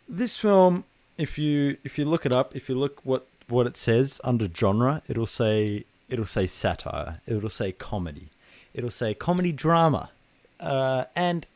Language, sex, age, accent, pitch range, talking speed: English, male, 20-39, Australian, 100-130 Hz, 165 wpm